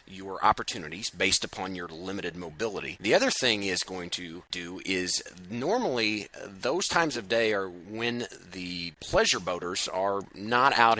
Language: English